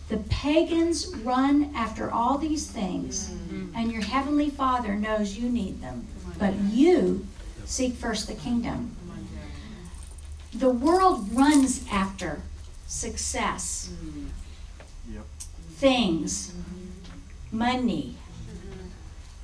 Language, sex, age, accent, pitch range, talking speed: English, female, 50-69, American, 170-290 Hz, 85 wpm